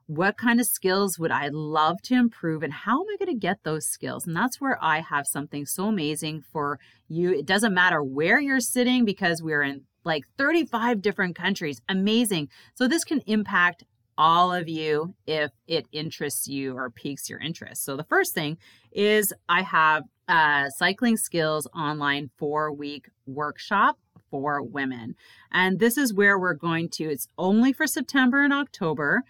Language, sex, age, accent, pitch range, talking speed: English, female, 30-49, American, 150-210 Hz, 175 wpm